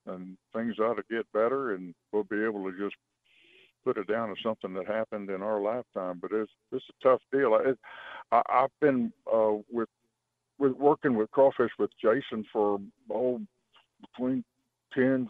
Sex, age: male, 60-79